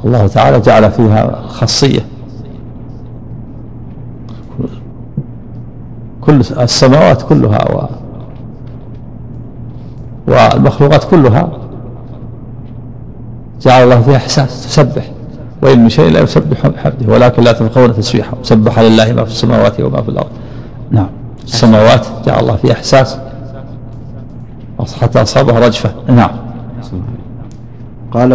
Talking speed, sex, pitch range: 95 wpm, male, 115-125 Hz